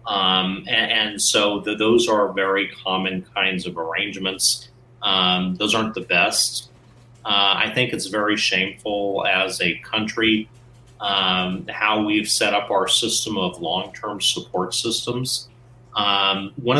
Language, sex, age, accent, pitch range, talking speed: English, male, 30-49, American, 95-120 Hz, 135 wpm